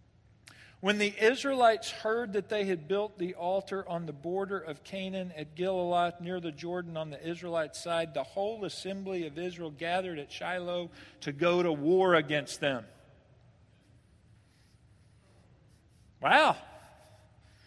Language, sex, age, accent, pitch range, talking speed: English, male, 50-69, American, 135-195 Hz, 130 wpm